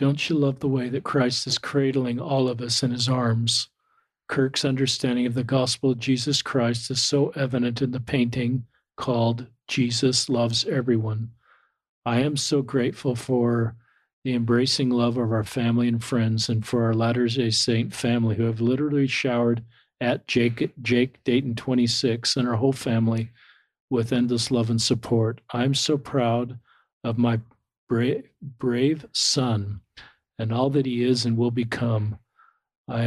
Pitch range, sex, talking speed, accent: 115-130 Hz, male, 155 wpm, American